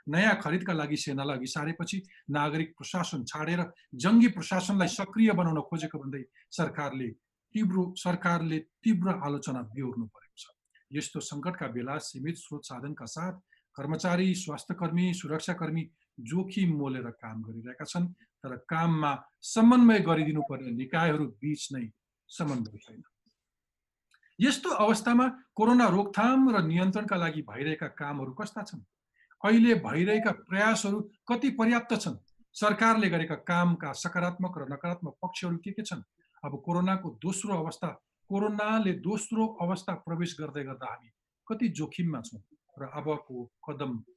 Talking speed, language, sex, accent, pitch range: 115 wpm, English, male, Indian, 145-200 Hz